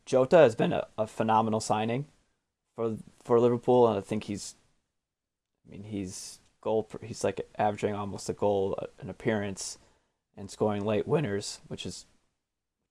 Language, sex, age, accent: English, male, 20-39, American